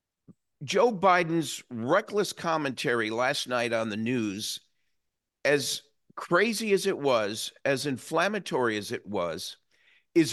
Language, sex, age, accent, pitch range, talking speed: English, male, 50-69, American, 130-175 Hz, 115 wpm